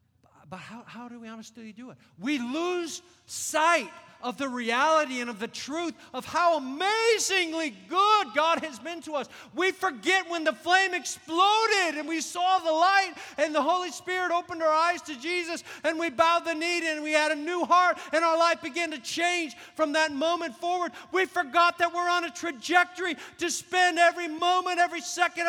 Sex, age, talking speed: male, 50-69, 190 wpm